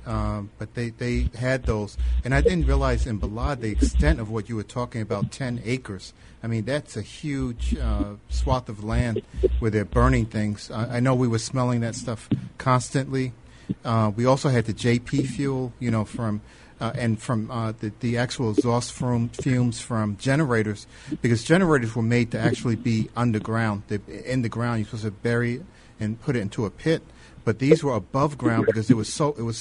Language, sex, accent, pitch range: English, male, American, 110-125 Hz